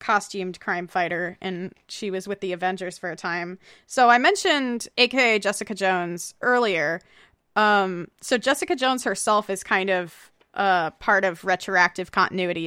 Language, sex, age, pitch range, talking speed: English, female, 20-39, 180-215 Hz, 150 wpm